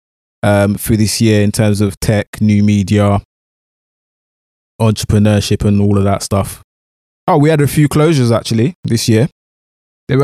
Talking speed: 150 wpm